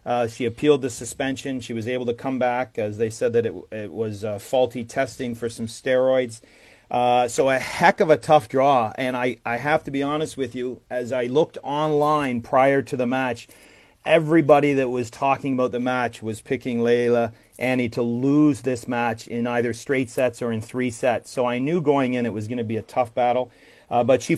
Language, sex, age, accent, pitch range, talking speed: English, male, 40-59, American, 120-145 Hz, 215 wpm